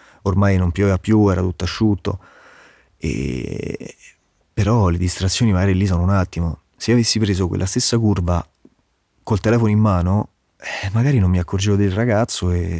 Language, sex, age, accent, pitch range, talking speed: Italian, male, 30-49, native, 90-110 Hz, 155 wpm